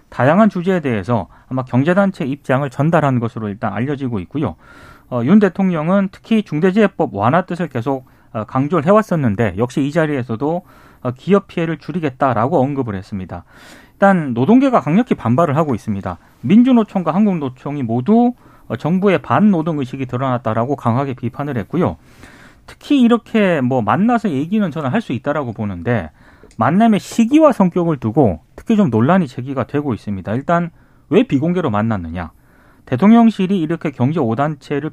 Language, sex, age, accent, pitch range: Korean, male, 30-49, native, 120-190 Hz